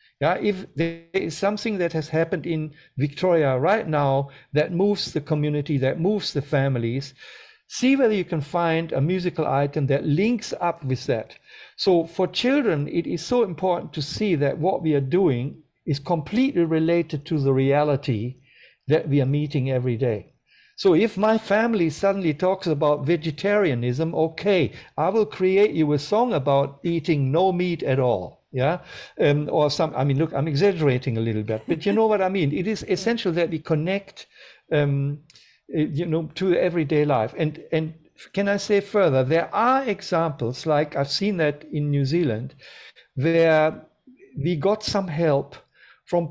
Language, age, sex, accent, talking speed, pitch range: English, 60-79, male, German, 170 wpm, 145-190 Hz